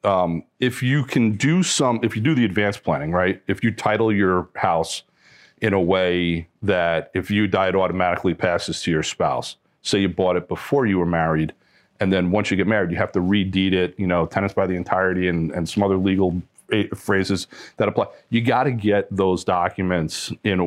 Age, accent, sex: 40-59, American, male